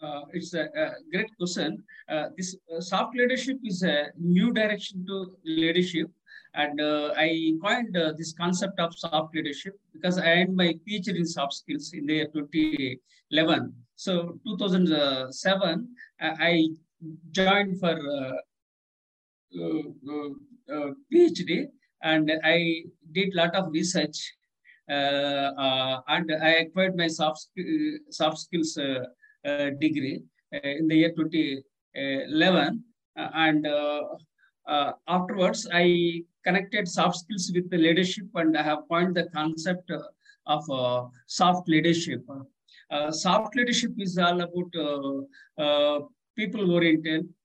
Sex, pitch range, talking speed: male, 150-190 Hz, 135 wpm